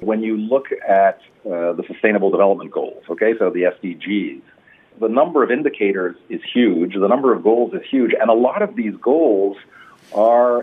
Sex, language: male, English